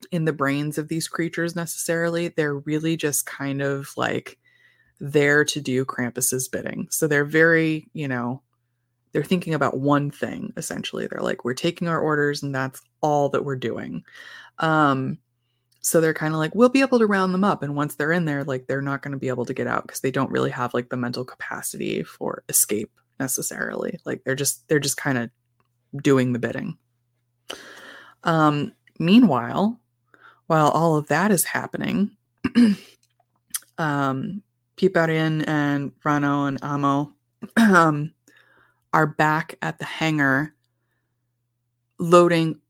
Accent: American